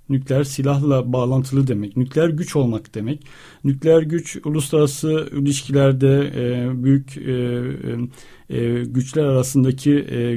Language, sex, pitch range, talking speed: Turkish, male, 130-145 Hz, 110 wpm